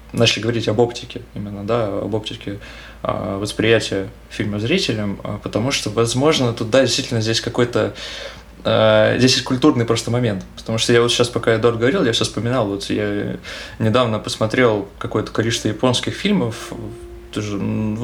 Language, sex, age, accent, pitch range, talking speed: Russian, male, 20-39, native, 100-120 Hz, 155 wpm